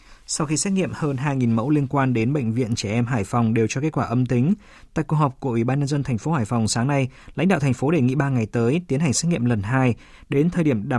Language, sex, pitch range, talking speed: Vietnamese, male, 120-150 Hz, 300 wpm